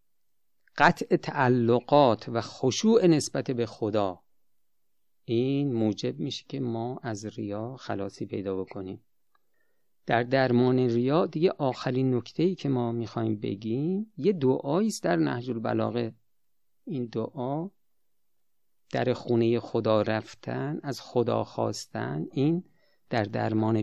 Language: Persian